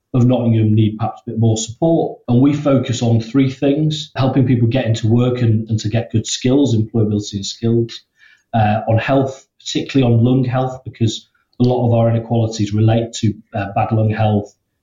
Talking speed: 190 wpm